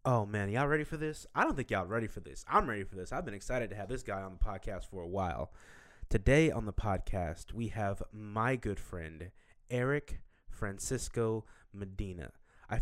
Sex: male